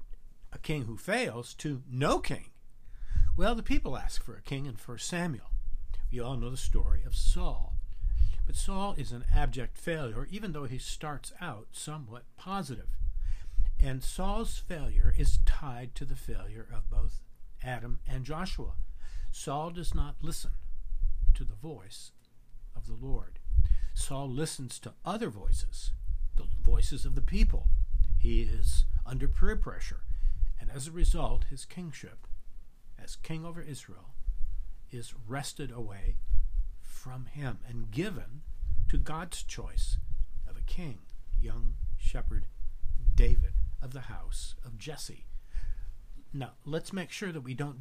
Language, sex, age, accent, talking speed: English, male, 60-79, American, 140 wpm